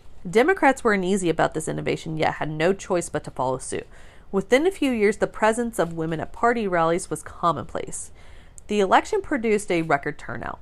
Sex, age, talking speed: female, 30-49, 185 wpm